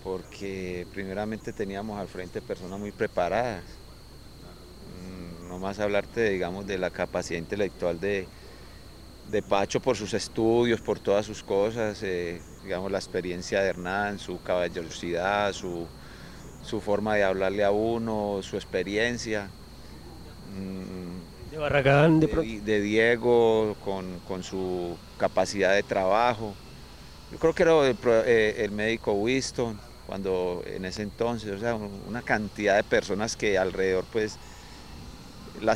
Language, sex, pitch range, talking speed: Spanish, male, 95-120 Hz, 135 wpm